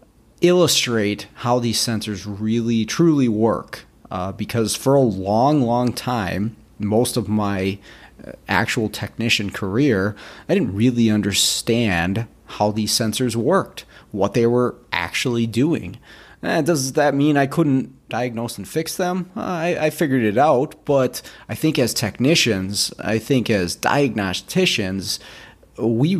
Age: 30-49